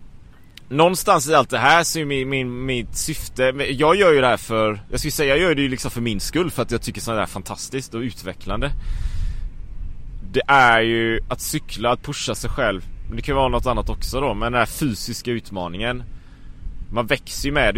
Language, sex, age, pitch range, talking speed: Swedish, male, 30-49, 95-130 Hz, 220 wpm